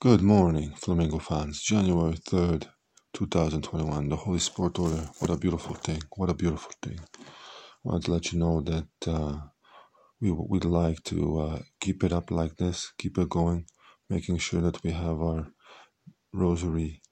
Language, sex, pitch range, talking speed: Hebrew, male, 80-90 Hz, 165 wpm